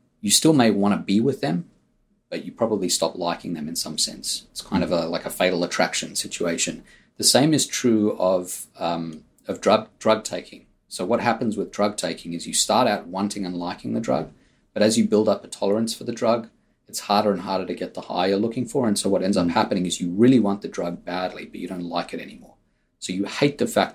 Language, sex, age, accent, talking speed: English, male, 30-49, Australian, 240 wpm